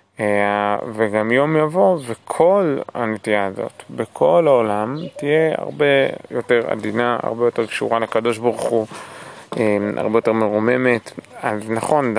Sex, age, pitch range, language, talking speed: male, 30-49, 110-130 Hz, Hebrew, 120 wpm